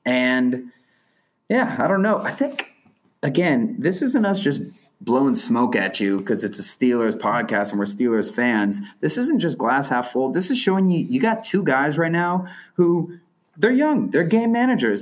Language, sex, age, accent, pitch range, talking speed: English, male, 30-49, American, 110-170 Hz, 190 wpm